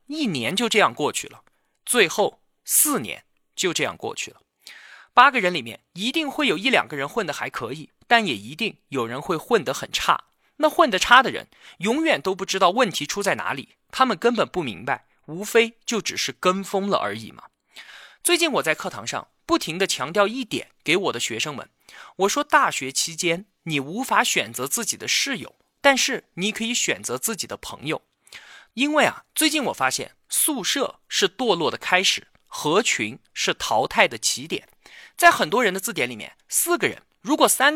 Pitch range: 180-290 Hz